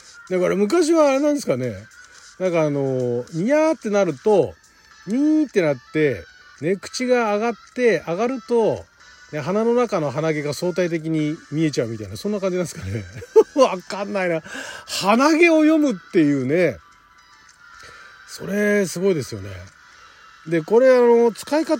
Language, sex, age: Japanese, male, 40-59